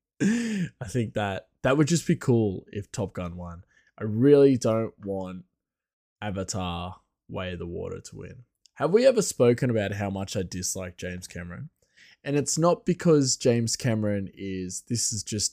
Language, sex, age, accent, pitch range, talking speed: English, male, 20-39, Australian, 100-135 Hz, 170 wpm